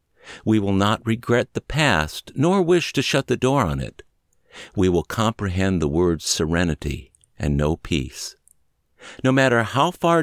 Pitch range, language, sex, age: 95-135 Hz, English, male, 60-79